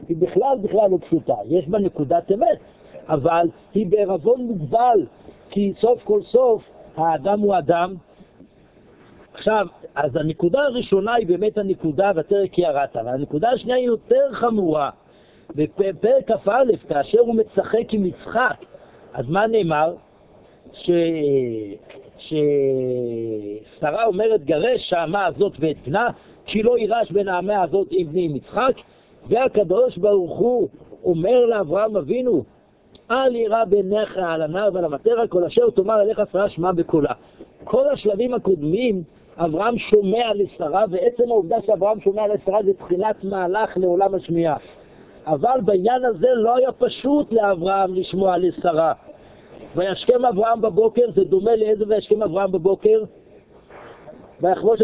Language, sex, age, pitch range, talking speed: Hebrew, male, 60-79, 175-230 Hz, 125 wpm